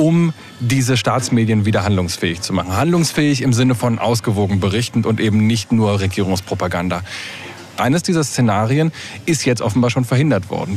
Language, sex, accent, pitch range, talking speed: German, male, German, 110-140 Hz, 150 wpm